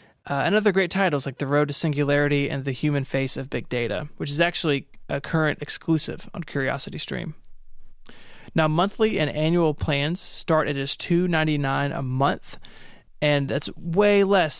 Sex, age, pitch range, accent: male, 20-39, 140-165 Hz, American